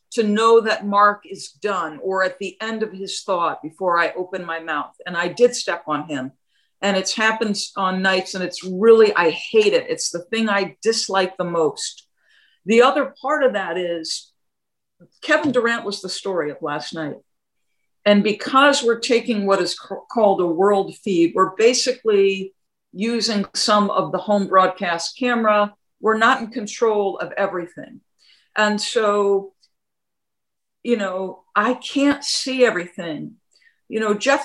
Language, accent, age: English, American, 50-69